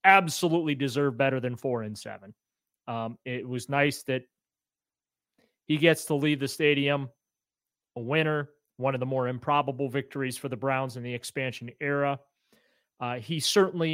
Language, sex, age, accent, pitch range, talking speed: English, male, 30-49, American, 125-160 Hz, 155 wpm